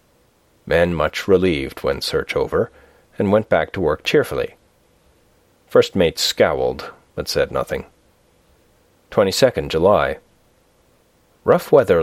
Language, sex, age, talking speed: English, male, 40-59, 110 wpm